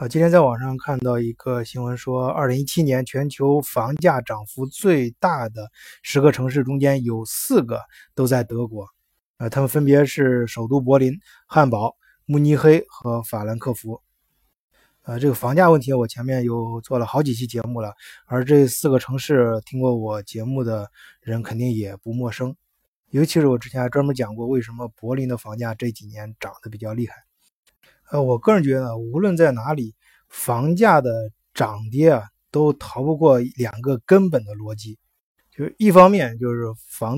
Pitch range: 115-140 Hz